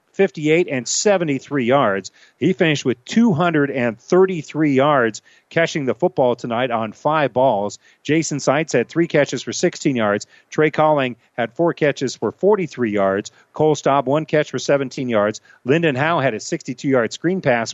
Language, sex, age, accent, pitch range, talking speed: English, male, 40-59, American, 115-155 Hz, 160 wpm